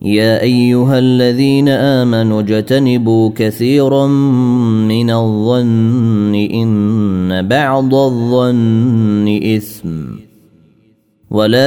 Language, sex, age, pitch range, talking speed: Arabic, male, 30-49, 105-125 Hz, 65 wpm